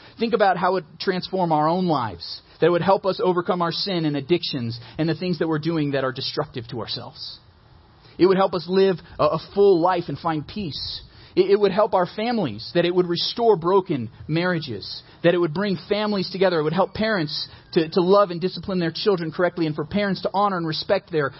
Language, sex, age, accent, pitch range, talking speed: English, male, 30-49, American, 150-195 Hz, 220 wpm